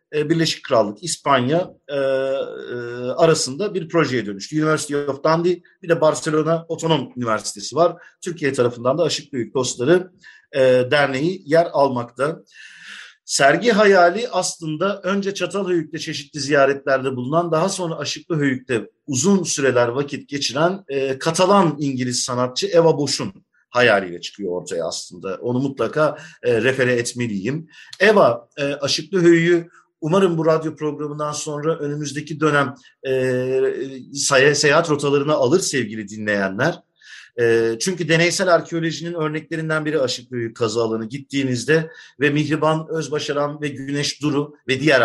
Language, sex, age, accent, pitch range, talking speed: Turkish, male, 50-69, native, 130-165 Hz, 125 wpm